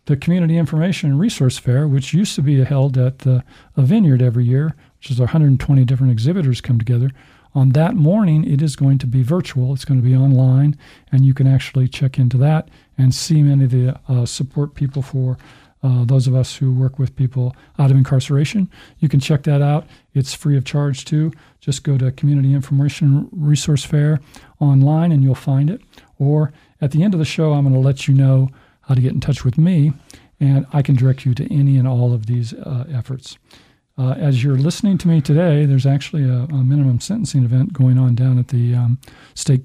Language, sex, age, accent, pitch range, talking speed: English, male, 40-59, American, 130-150 Hz, 210 wpm